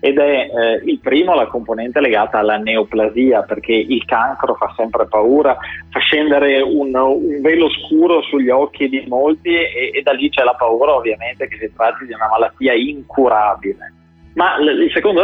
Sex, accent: male, native